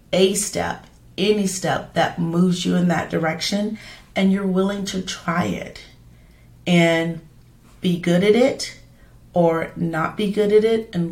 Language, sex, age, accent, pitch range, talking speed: English, female, 40-59, American, 150-180 Hz, 150 wpm